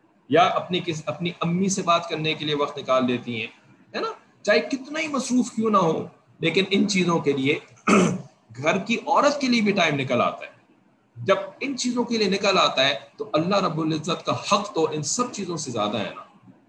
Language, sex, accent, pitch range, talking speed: English, male, Indian, 165-230 Hz, 195 wpm